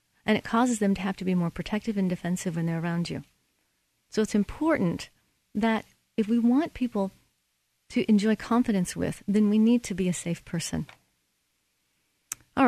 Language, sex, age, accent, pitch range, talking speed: English, female, 40-59, American, 160-220 Hz, 175 wpm